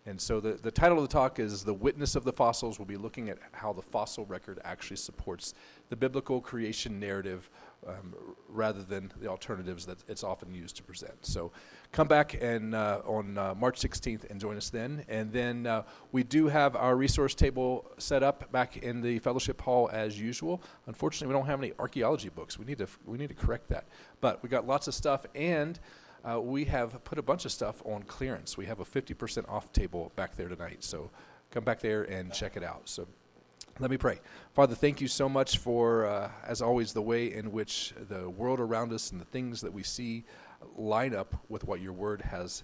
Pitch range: 100-125 Hz